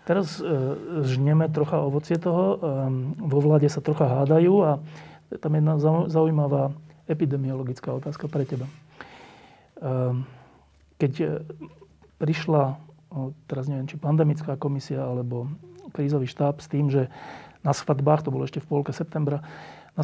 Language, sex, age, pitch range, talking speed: Slovak, male, 40-59, 135-155 Hz, 125 wpm